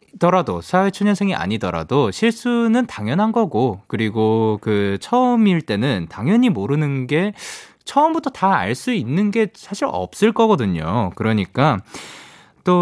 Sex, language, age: male, Korean, 20-39